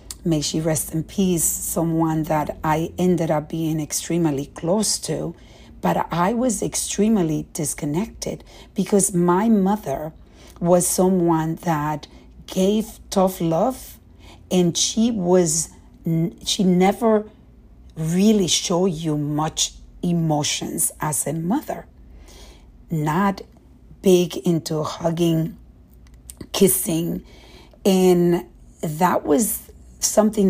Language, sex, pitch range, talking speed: English, female, 155-185 Hz, 100 wpm